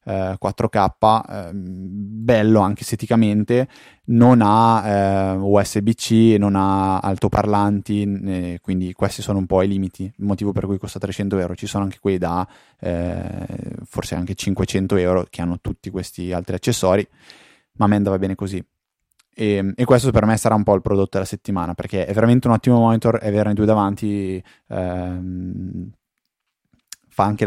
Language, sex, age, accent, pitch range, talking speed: Italian, male, 20-39, native, 95-110 Hz, 165 wpm